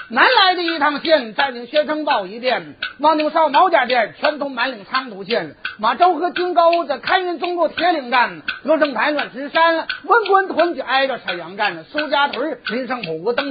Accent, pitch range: native, 235-320 Hz